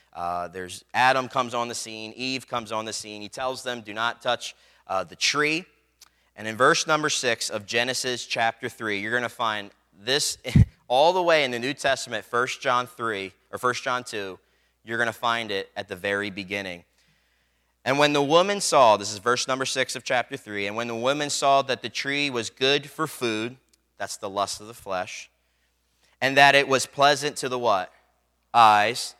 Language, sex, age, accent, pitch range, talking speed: English, male, 30-49, American, 90-130 Hz, 195 wpm